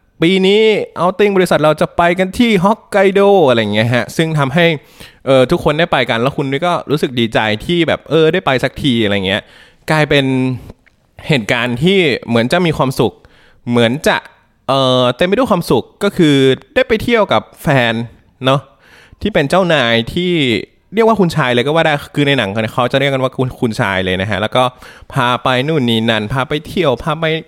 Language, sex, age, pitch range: English, male, 20-39, 115-165 Hz